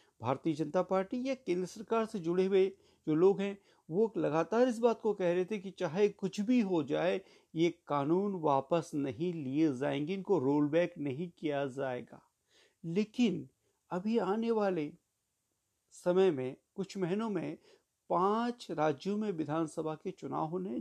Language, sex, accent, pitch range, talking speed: Hindi, male, native, 160-220 Hz, 155 wpm